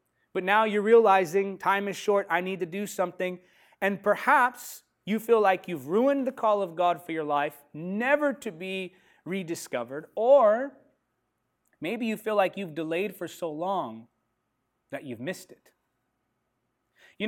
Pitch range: 155-210 Hz